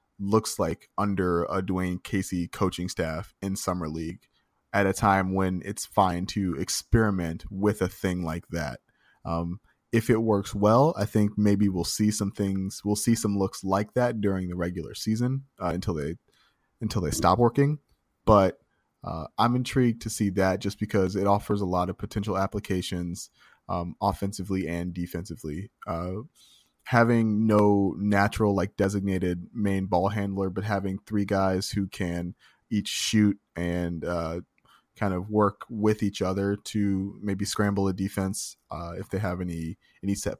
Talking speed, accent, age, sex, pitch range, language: 165 wpm, American, 20-39, male, 90-105 Hz, English